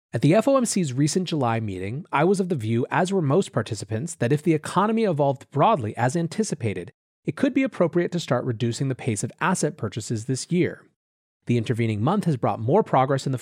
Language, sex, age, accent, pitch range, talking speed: English, male, 30-49, American, 115-175 Hz, 205 wpm